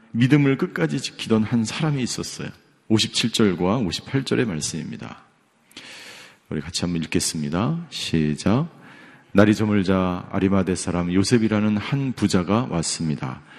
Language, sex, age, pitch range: Korean, male, 40-59, 95-125 Hz